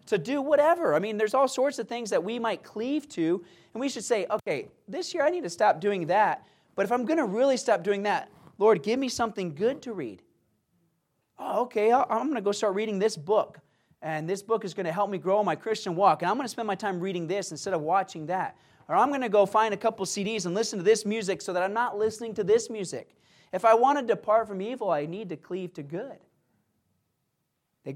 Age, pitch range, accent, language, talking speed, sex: 30-49, 155-210 Hz, American, English, 245 wpm, male